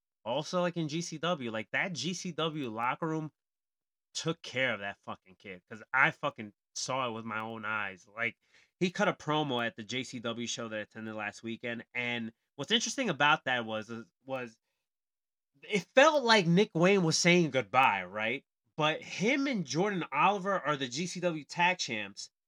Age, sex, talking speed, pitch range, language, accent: 20-39, male, 170 wpm, 125-175 Hz, English, American